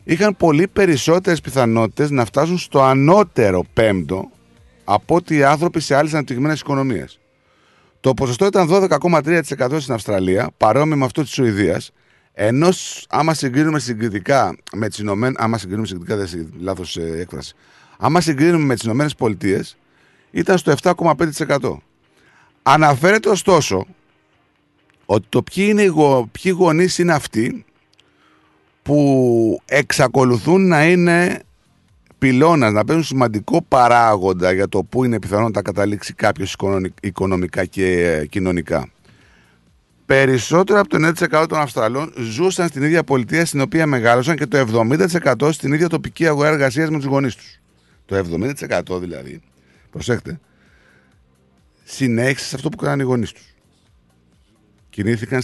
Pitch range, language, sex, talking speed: 100-160 Hz, Greek, male, 125 wpm